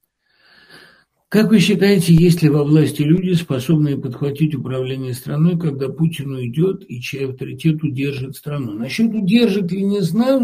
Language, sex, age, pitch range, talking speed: Russian, male, 60-79, 140-195 Hz, 145 wpm